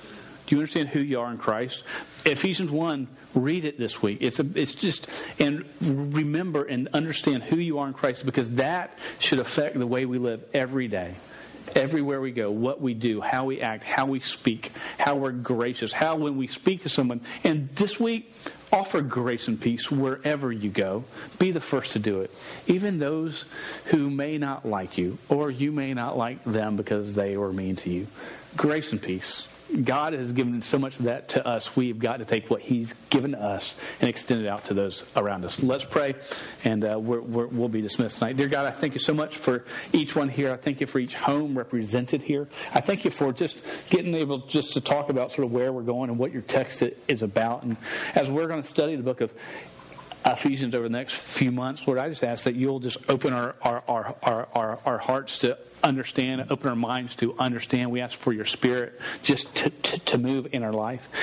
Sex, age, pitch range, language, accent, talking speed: male, 40-59, 120-145 Hz, English, American, 220 wpm